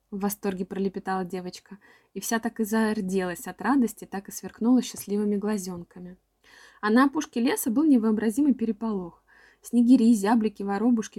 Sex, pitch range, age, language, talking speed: female, 190-240 Hz, 20-39, Russian, 140 wpm